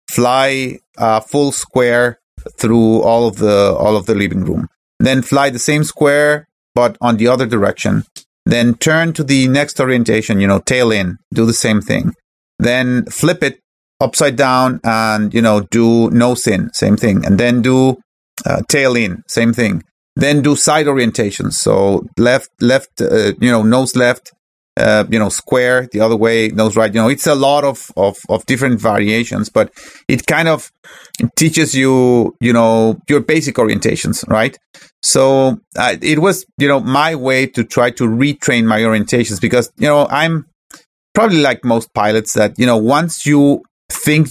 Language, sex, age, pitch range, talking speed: English, male, 30-49, 110-140 Hz, 175 wpm